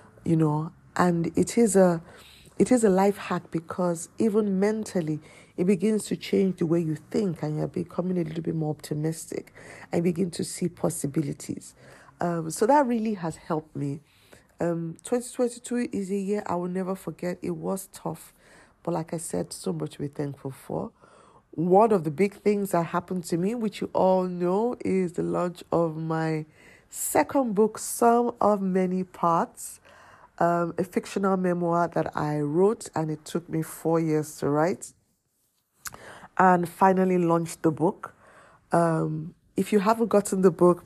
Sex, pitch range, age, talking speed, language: female, 155-190 Hz, 50-69, 170 wpm, English